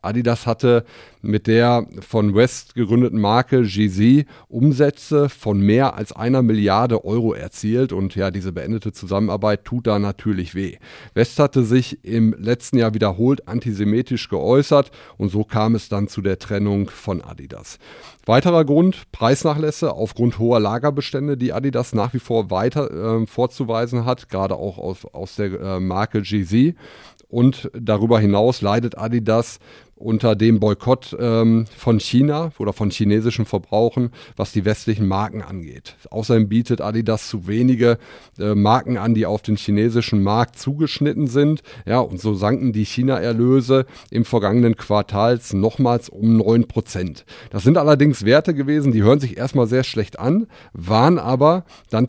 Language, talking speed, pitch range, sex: German, 150 wpm, 105-125 Hz, male